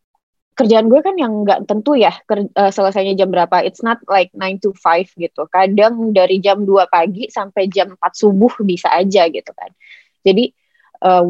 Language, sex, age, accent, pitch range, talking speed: Indonesian, female, 20-39, native, 185-215 Hz, 180 wpm